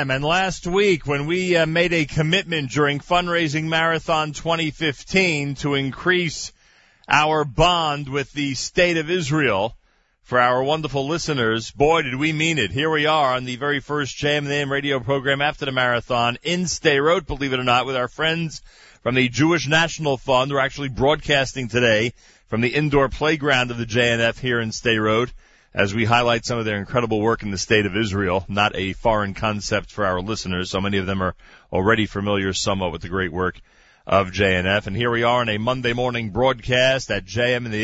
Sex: male